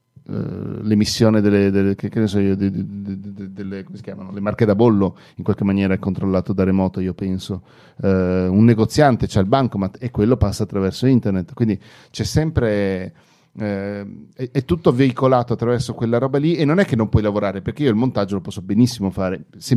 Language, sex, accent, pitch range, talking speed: Italian, male, native, 95-115 Hz, 200 wpm